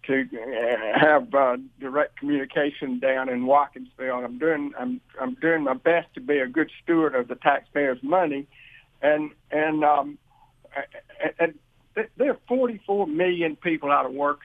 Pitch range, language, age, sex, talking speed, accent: 140-190 Hz, English, 60-79, male, 155 wpm, American